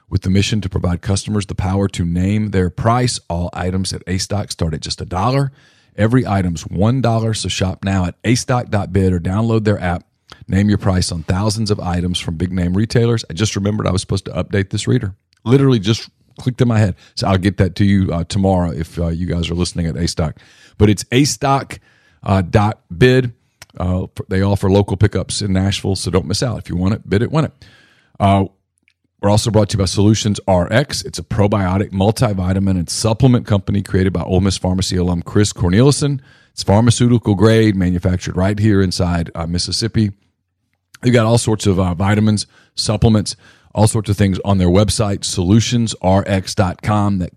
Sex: male